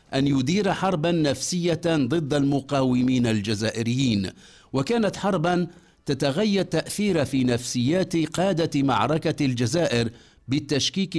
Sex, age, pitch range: male, 50-69, 125-160 Hz